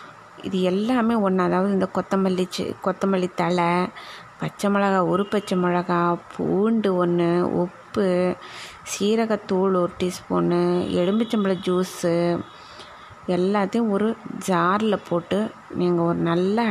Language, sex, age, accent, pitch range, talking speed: Tamil, female, 20-39, native, 175-210 Hz, 100 wpm